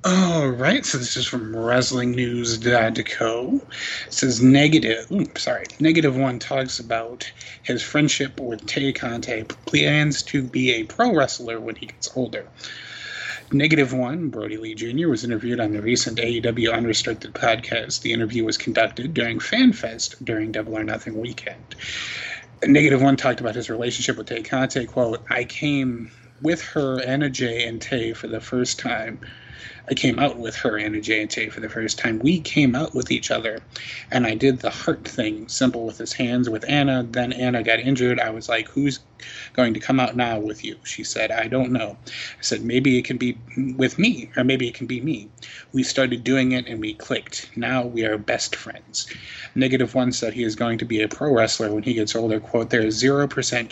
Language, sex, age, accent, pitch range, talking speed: English, male, 30-49, American, 115-130 Hz, 195 wpm